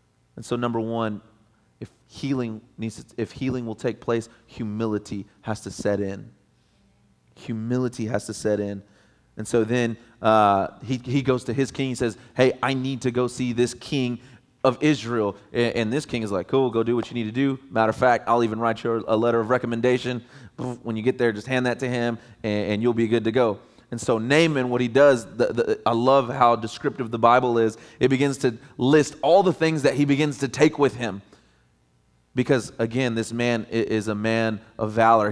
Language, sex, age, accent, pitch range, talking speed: English, male, 30-49, American, 110-130 Hz, 205 wpm